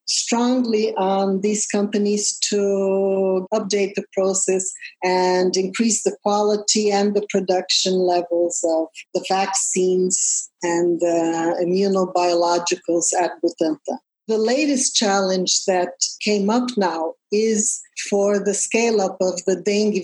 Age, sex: 50-69, female